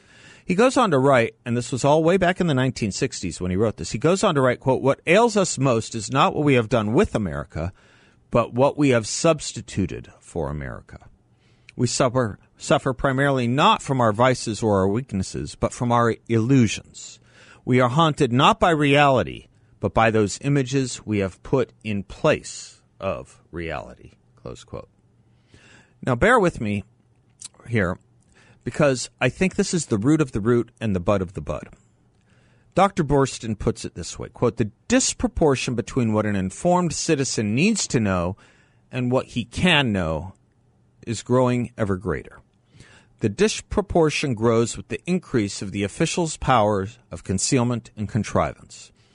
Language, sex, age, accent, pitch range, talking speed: English, male, 50-69, American, 105-140 Hz, 170 wpm